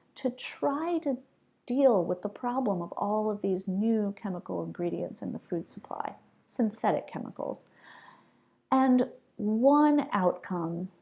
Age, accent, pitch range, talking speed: 40-59, American, 180-250 Hz, 125 wpm